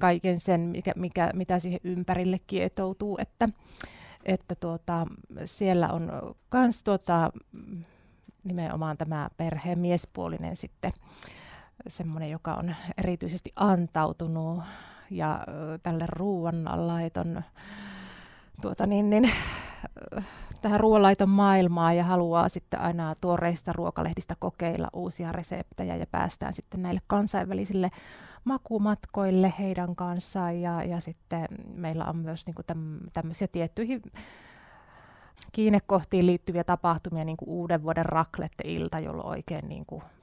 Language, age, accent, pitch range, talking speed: Finnish, 30-49, native, 165-190 Hz, 105 wpm